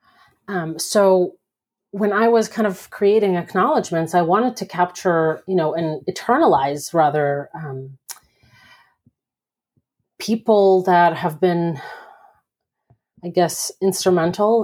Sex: female